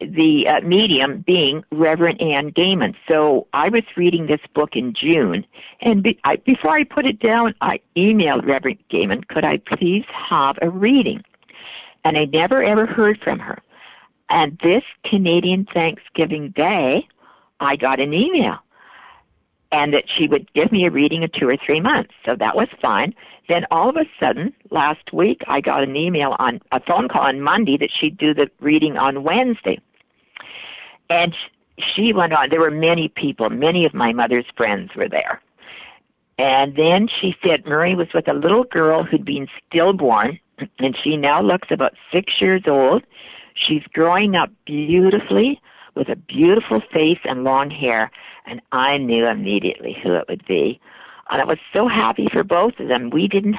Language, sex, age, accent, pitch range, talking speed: English, female, 60-79, American, 145-200 Hz, 170 wpm